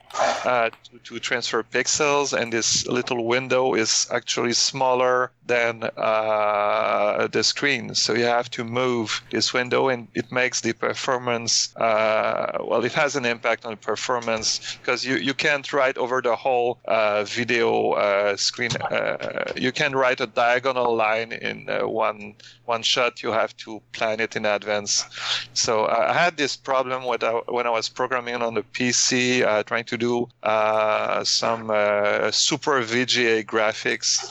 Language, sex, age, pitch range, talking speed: English, male, 40-59, 110-125 Hz, 160 wpm